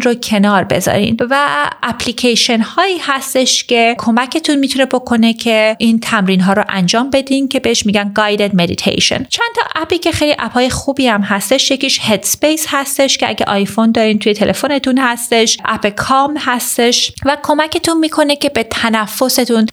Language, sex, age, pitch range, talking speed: Persian, female, 30-49, 215-290 Hz, 160 wpm